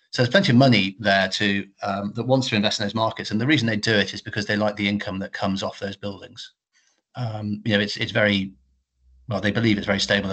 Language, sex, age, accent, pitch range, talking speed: English, male, 40-59, British, 100-115 Hz, 255 wpm